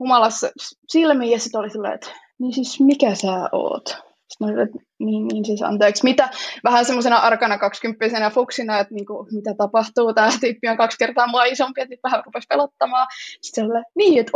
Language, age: Finnish, 20-39